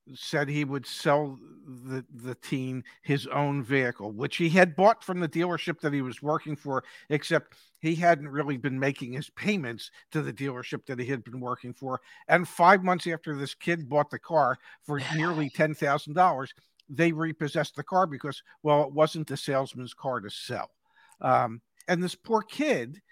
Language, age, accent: English, 50-69, American